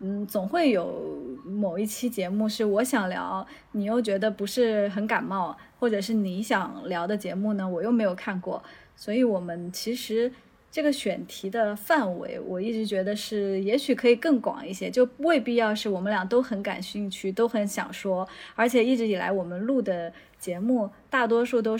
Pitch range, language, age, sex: 190-240 Hz, Chinese, 20-39, female